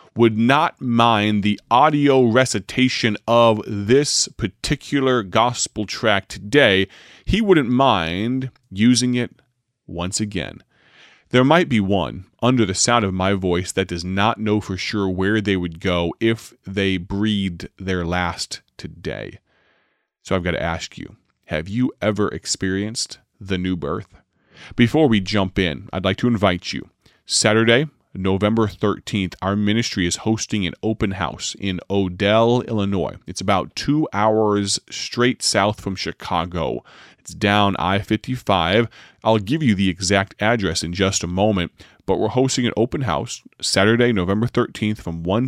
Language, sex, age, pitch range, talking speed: English, male, 30-49, 95-120 Hz, 150 wpm